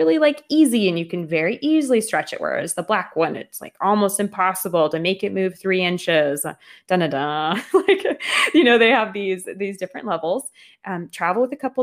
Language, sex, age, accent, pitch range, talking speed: English, female, 20-39, American, 160-200 Hz, 195 wpm